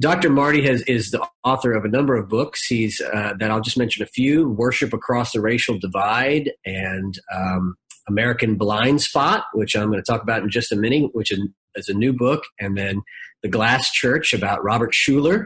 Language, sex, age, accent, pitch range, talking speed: English, male, 40-59, American, 105-130 Hz, 205 wpm